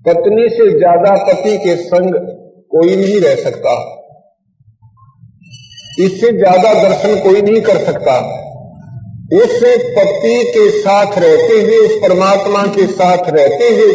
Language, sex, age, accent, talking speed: Hindi, male, 50-69, native, 125 wpm